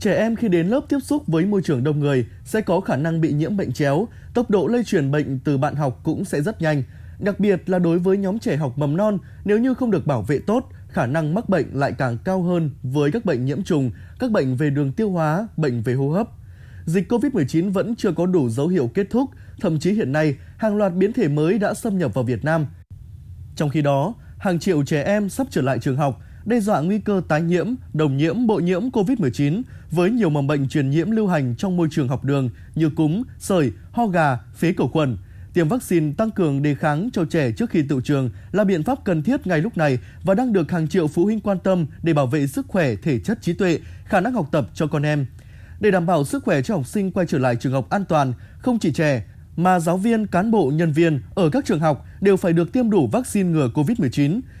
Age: 20-39